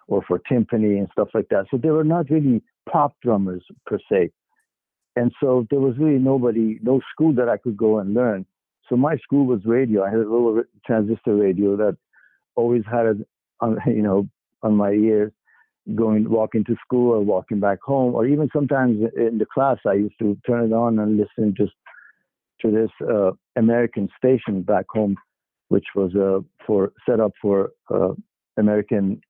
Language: English